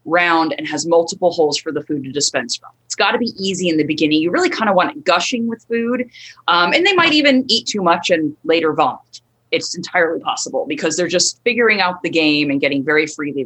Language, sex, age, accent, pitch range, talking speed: English, female, 30-49, American, 170-255 Hz, 235 wpm